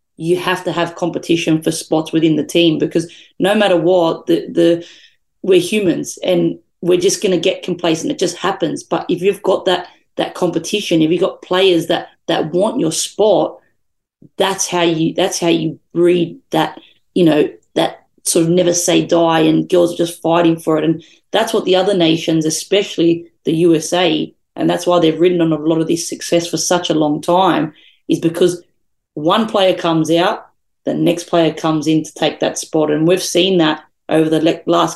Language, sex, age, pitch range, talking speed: English, female, 30-49, 160-180 Hz, 195 wpm